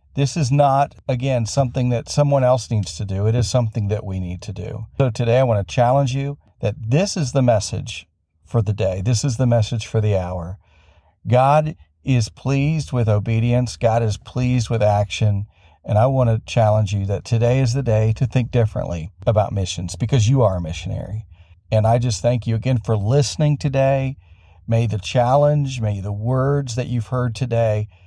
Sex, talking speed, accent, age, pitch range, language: male, 195 wpm, American, 50-69, 105-130 Hz, English